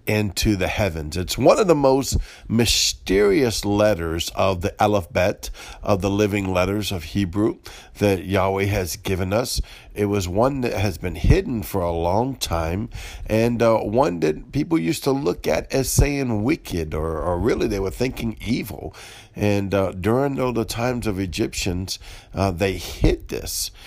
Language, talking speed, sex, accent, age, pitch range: English, 165 wpm, male, American, 50-69, 95-115 Hz